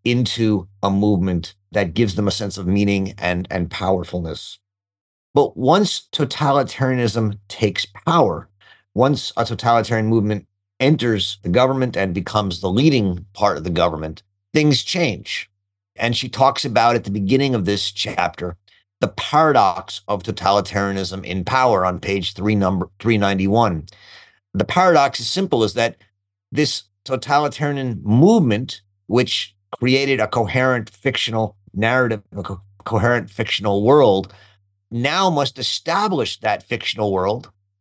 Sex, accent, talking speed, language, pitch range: male, American, 125 wpm, English, 100-130 Hz